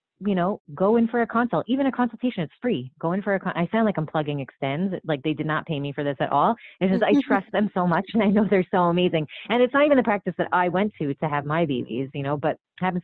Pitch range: 145-185 Hz